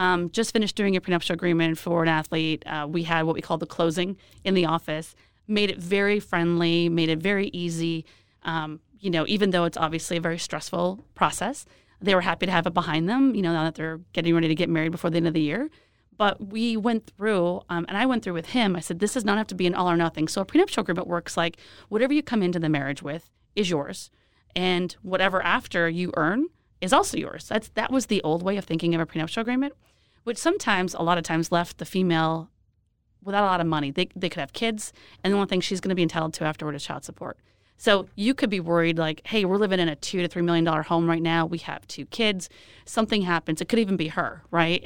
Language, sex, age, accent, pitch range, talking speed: English, female, 30-49, American, 165-200 Hz, 250 wpm